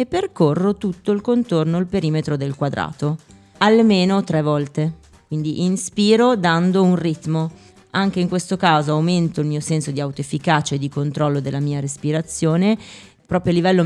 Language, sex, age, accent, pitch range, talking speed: Italian, female, 30-49, native, 150-180 Hz, 150 wpm